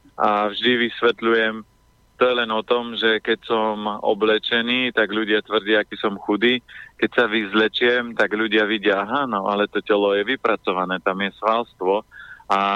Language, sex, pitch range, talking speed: Slovak, male, 105-115 Hz, 160 wpm